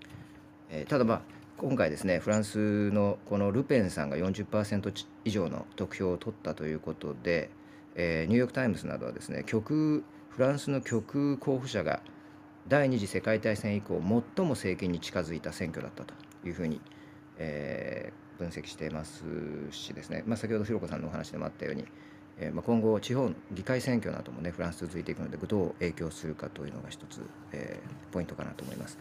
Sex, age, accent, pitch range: male, 40-59, native, 85-115 Hz